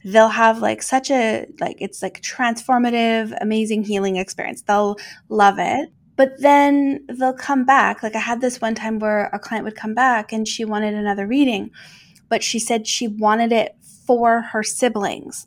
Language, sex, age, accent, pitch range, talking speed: English, female, 20-39, American, 205-240 Hz, 180 wpm